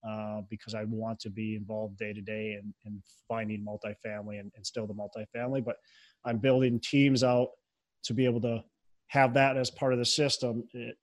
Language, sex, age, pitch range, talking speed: English, male, 30-49, 115-150 Hz, 190 wpm